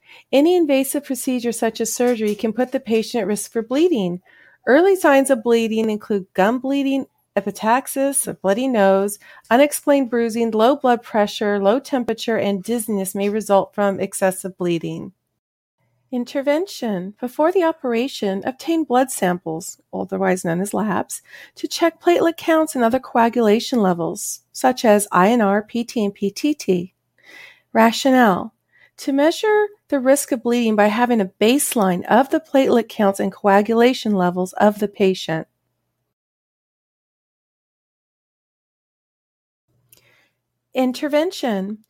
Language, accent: English, American